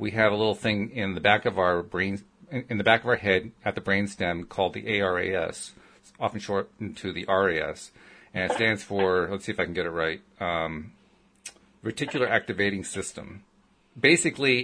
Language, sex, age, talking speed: English, male, 40-59, 185 wpm